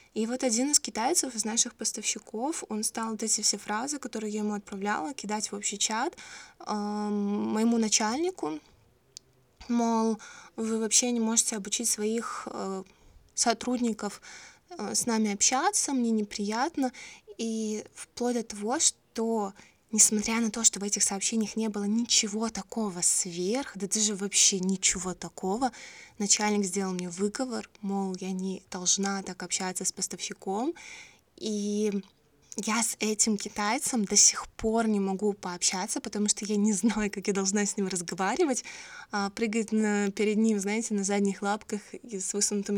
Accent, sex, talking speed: native, female, 150 wpm